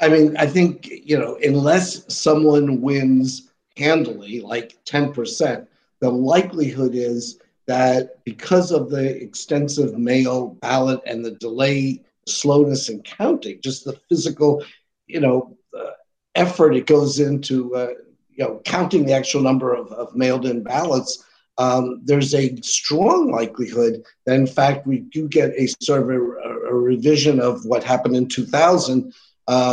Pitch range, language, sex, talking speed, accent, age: 125-145 Hz, English, male, 145 wpm, American, 50-69